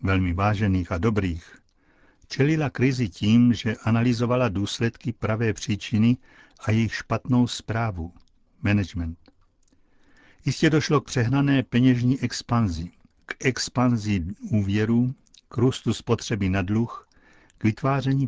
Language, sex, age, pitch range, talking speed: Czech, male, 60-79, 100-125 Hz, 110 wpm